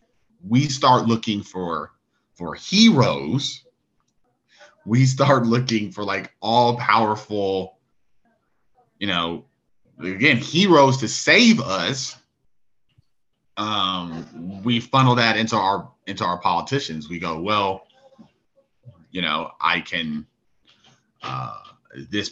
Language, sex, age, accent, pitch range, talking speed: English, male, 30-49, American, 90-125 Hz, 100 wpm